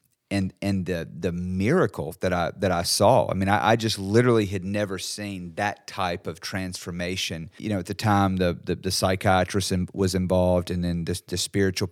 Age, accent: 40-59, American